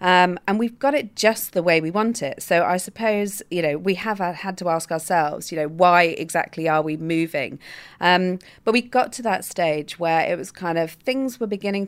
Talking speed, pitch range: 220 wpm, 160-200 Hz